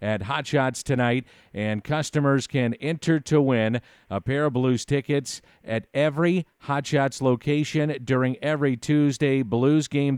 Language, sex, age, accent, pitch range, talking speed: English, male, 50-69, American, 115-145 Hz, 145 wpm